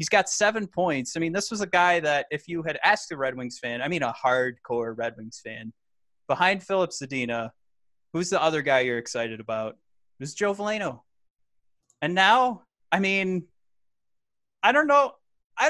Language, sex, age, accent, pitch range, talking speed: English, male, 30-49, American, 130-210 Hz, 185 wpm